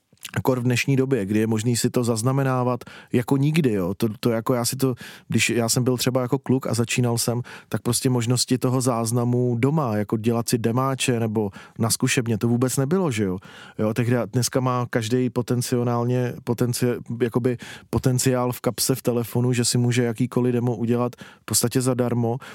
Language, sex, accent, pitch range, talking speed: Czech, male, native, 120-130 Hz, 180 wpm